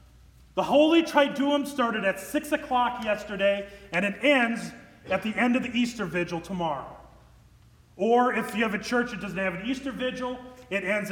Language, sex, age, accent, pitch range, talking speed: English, male, 30-49, American, 200-275 Hz, 180 wpm